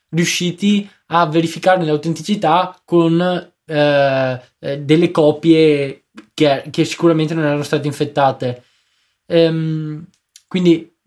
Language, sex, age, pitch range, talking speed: Italian, male, 20-39, 135-170 Hz, 90 wpm